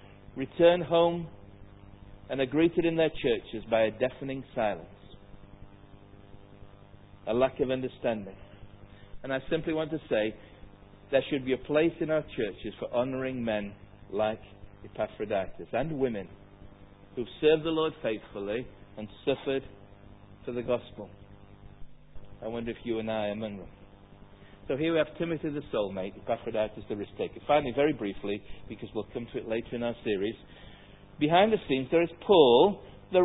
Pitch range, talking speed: 100-155 Hz, 155 wpm